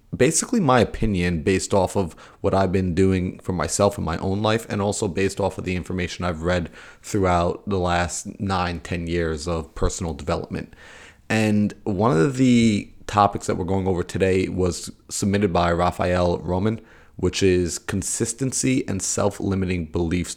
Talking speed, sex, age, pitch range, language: 160 wpm, male, 30-49, 85-105 Hz, English